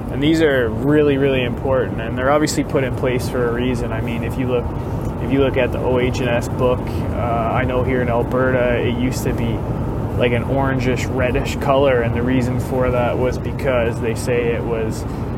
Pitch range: 115-130 Hz